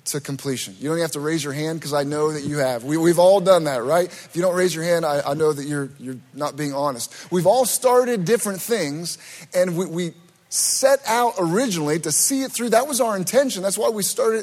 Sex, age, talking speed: male, 30-49, 250 wpm